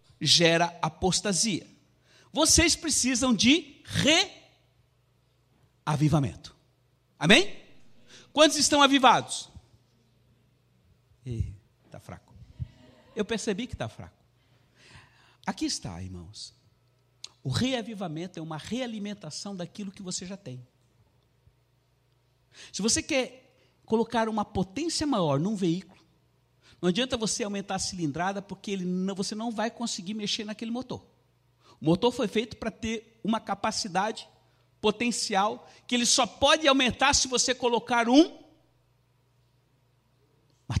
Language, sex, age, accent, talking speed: Portuguese, male, 60-79, Brazilian, 105 wpm